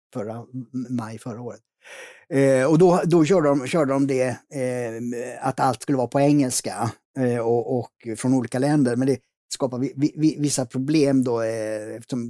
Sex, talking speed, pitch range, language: male, 130 wpm, 120-145 Hz, Swedish